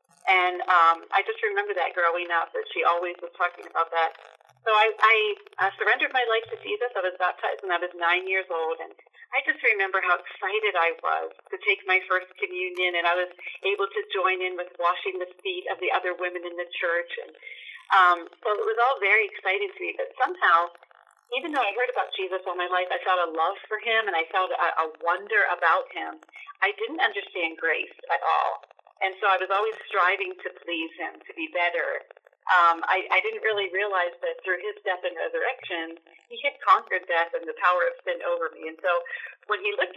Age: 40-59